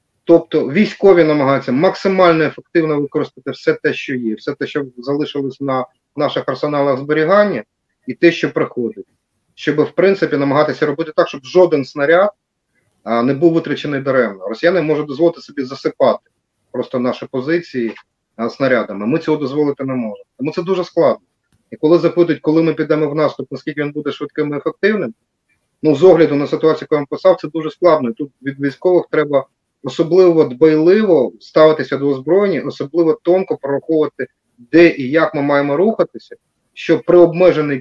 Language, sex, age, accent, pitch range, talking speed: Ukrainian, male, 30-49, native, 135-165 Hz, 160 wpm